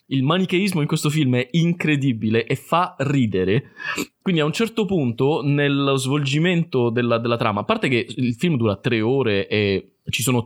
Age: 20-39